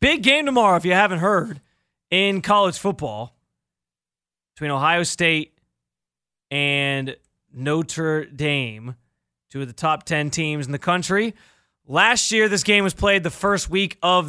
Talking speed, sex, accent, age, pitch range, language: 145 wpm, male, American, 20-39, 130-190 Hz, English